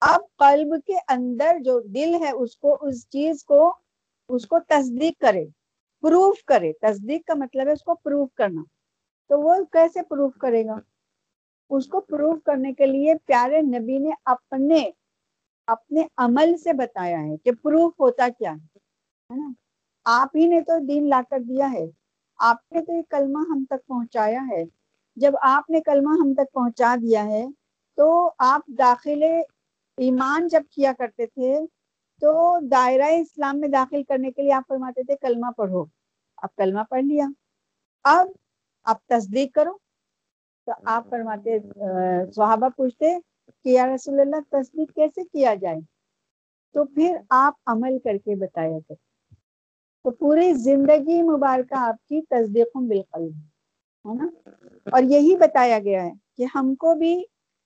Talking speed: 130 wpm